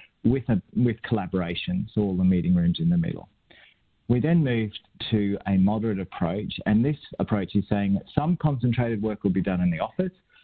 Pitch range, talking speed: 95-115 Hz, 190 wpm